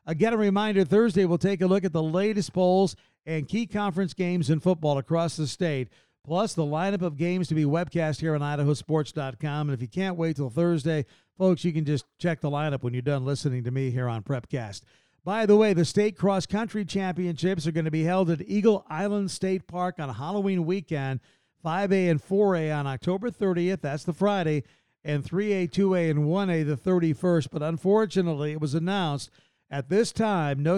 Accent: American